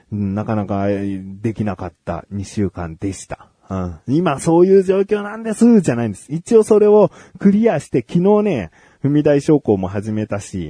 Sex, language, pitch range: male, Japanese, 100-140 Hz